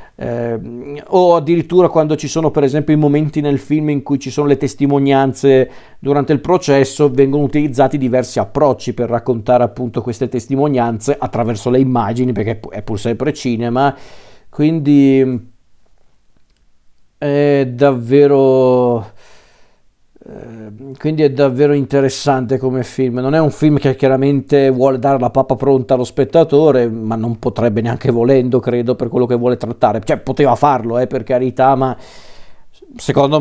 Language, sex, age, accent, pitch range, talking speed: Italian, male, 50-69, native, 125-145 Hz, 140 wpm